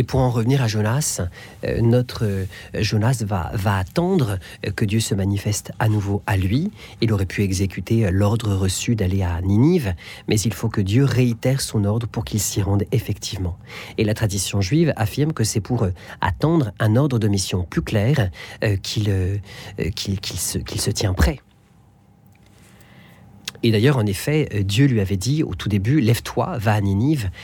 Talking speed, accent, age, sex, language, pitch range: 190 wpm, French, 40-59, male, French, 105-130 Hz